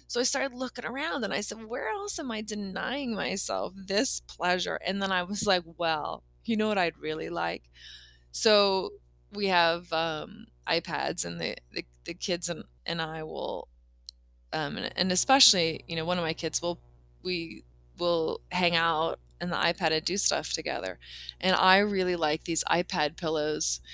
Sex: female